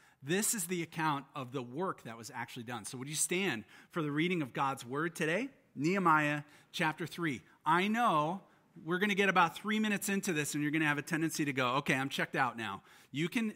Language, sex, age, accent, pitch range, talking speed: English, male, 40-59, American, 140-185 Hz, 230 wpm